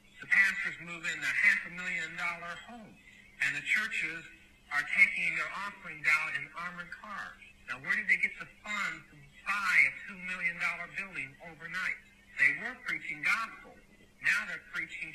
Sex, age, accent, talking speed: male, 50-69, American, 170 wpm